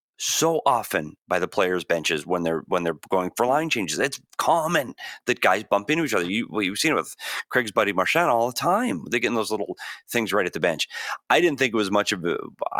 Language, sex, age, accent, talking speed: English, male, 30-49, American, 245 wpm